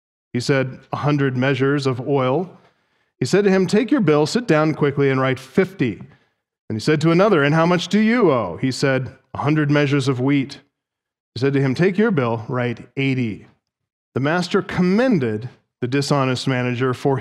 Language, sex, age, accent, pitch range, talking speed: English, male, 40-59, American, 140-195 Hz, 190 wpm